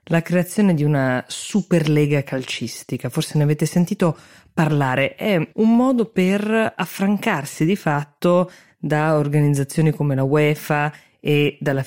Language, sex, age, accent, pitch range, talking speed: Italian, female, 20-39, native, 135-175 Hz, 125 wpm